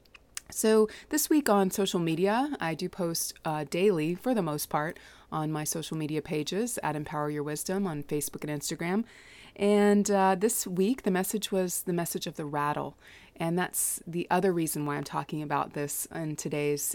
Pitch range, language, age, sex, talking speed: 150-180 Hz, English, 20-39, female, 185 wpm